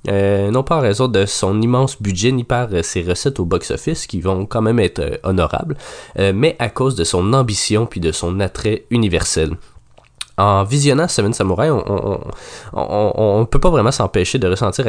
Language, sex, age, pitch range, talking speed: French, male, 20-39, 95-125 Hz, 185 wpm